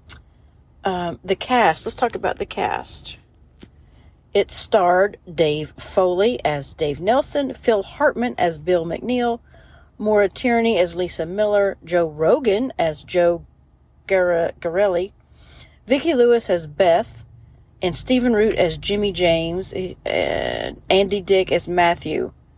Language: English